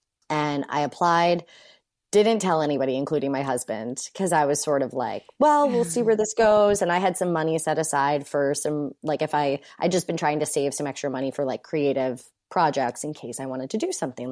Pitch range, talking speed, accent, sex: 140-170 Hz, 220 wpm, American, female